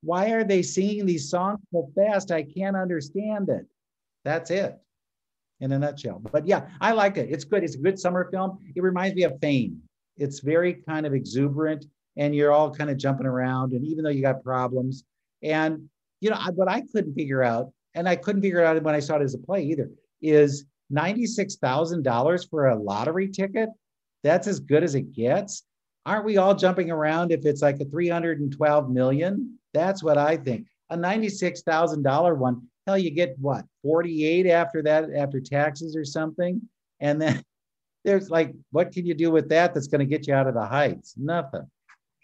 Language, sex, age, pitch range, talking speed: English, male, 50-69, 135-180 Hz, 195 wpm